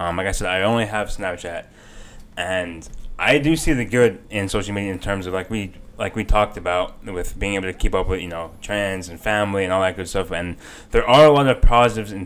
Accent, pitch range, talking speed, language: American, 90-110 Hz, 250 wpm, English